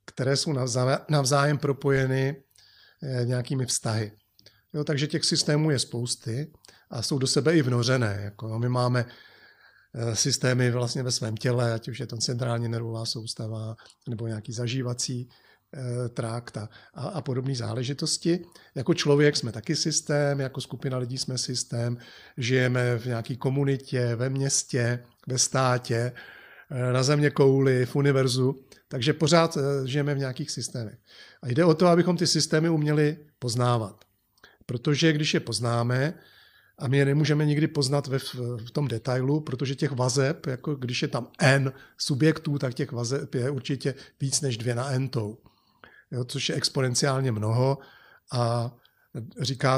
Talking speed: 140 wpm